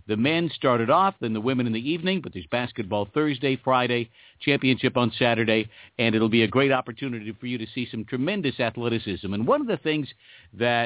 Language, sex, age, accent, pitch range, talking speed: English, male, 50-69, American, 110-140 Hz, 205 wpm